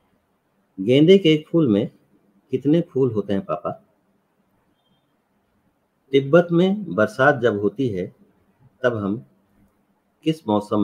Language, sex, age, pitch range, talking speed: Hindi, male, 50-69, 100-130 Hz, 110 wpm